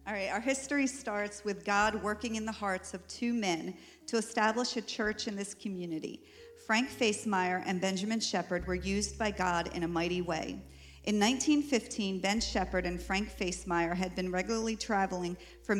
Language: English